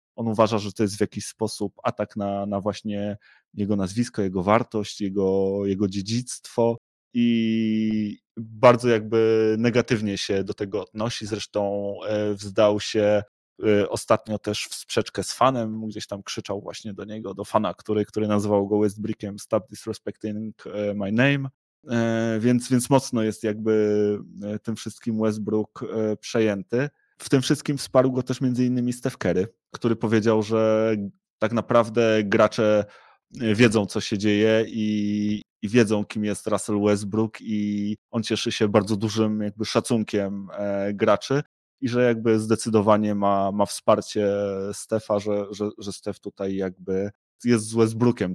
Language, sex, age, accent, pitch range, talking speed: Polish, male, 20-39, native, 105-115 Hz, 145 wpm